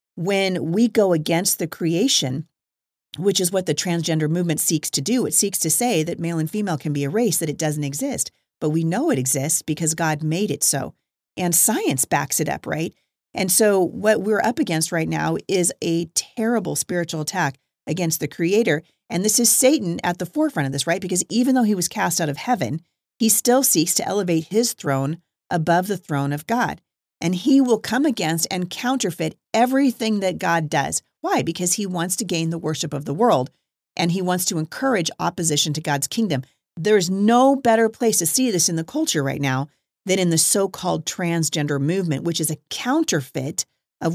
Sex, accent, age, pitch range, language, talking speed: female, American, 40-59, 155-210 Hz, English, 205 wpm